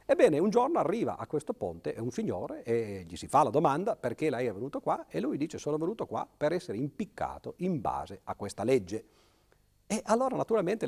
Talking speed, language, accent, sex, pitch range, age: 205 wpm, Italian, native, male, 110-160 Hz, 50-69